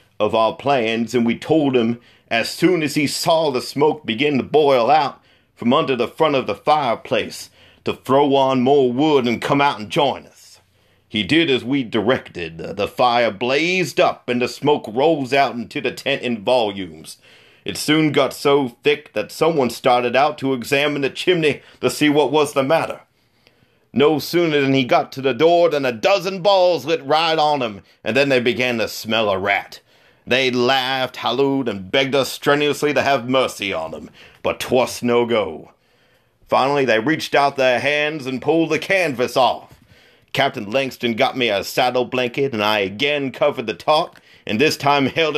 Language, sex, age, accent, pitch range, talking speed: English, male, 40-59, American, 120-150 Hz, 190 wpm